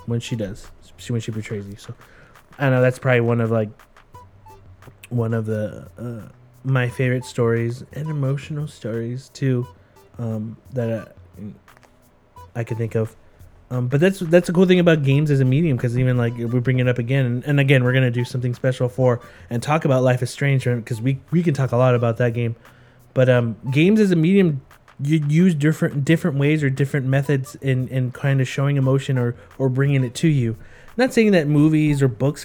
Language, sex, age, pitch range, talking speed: English, male, 20-39, 120-150 Hz, 205 wpm